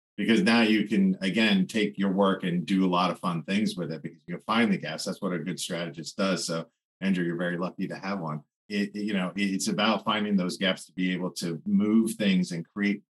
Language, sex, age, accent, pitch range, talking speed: English, male, 40-59, American, 95-140 Hz, 235 wpm